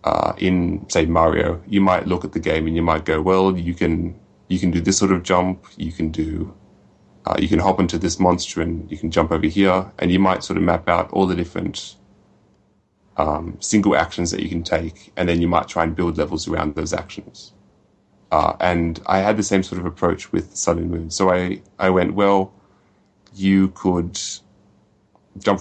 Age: 20-39